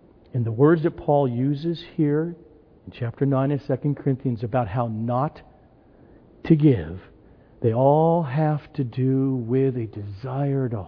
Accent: American